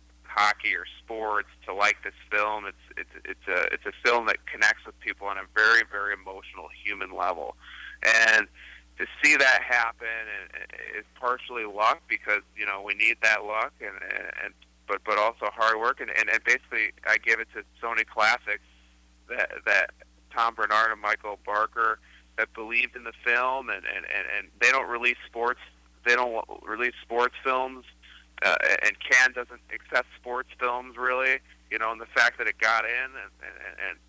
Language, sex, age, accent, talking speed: English, male, 30-49, American, 180 wpm